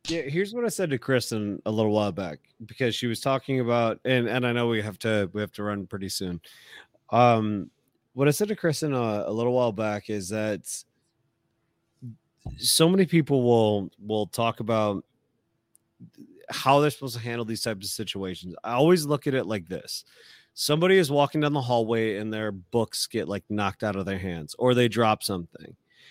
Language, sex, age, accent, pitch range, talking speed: English, male, 30-49, American, 110-140 Hz, 195 wpm